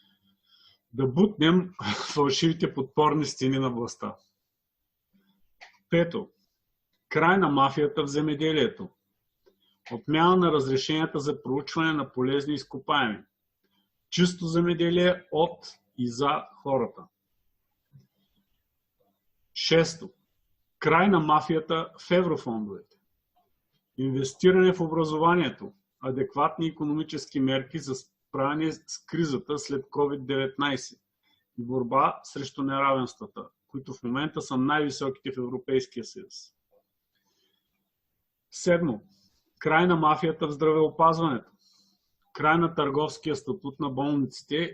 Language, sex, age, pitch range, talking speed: Bulgarian, male, 40-59, 130-165 Hz, 95 wpm